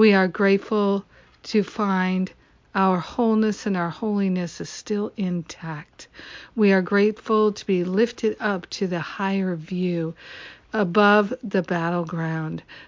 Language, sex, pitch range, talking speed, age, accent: English, female, 170-215 Hz, 125 wpm, 60-79, American